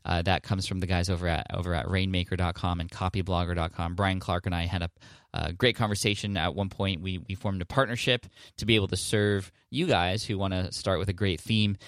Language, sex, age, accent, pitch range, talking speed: English, male, 20-39, American, 90-110 Hz, 225 wpm